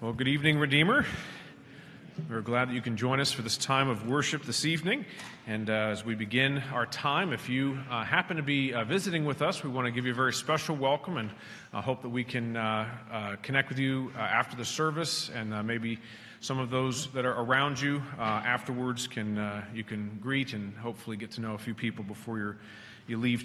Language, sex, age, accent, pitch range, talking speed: English, male, 40-59, American, 115-140 Hz, 225 wpm